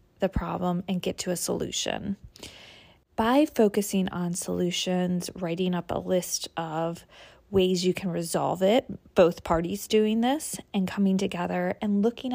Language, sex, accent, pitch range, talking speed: English, female, American, 185-235 Hz, 145 wpm